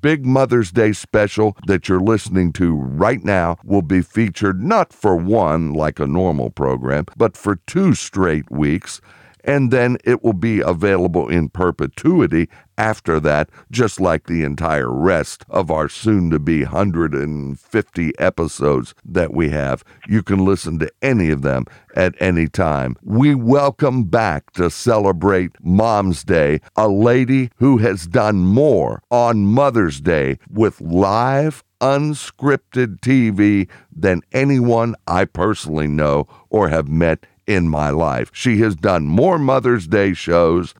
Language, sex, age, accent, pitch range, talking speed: English, male, 60-79, American, 85-120 Hz, 140 wpm